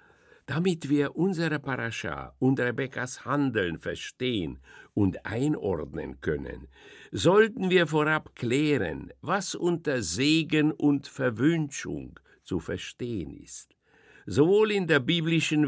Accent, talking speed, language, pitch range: German, 105 wpm, German, 115-155 Hz